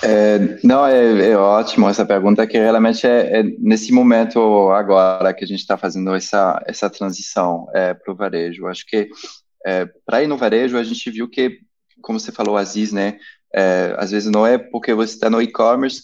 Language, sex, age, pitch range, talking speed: Portuguese, male, 20-39, 100-130 Hz, 195 wpm